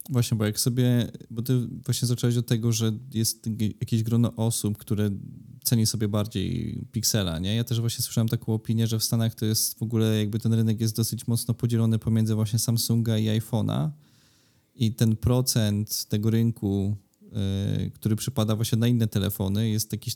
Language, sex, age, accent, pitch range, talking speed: Polish, male, 20-39, native, 105-120 Hz, 175 wpm